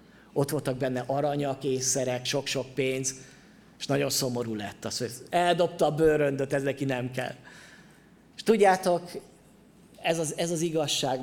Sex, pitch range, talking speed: male, 145-200 Hz, 145 wpm